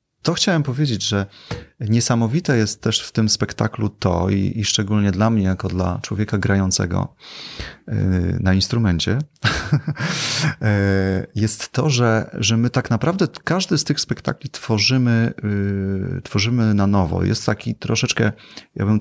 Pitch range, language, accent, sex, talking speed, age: 95-115 Hz, Polish, native, male, 135 wpm, 30-49